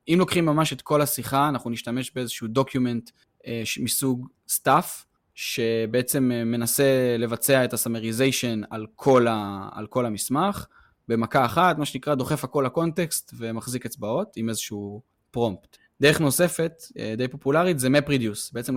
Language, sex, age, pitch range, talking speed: Hebrew, male, 20-39, 115-145 Hz, 135 wpm